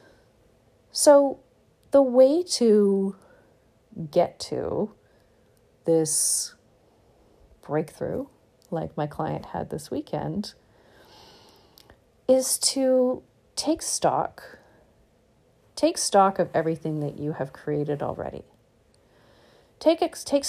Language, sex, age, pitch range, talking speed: English, female, 40-59, 155-240 Hz, 85 wpm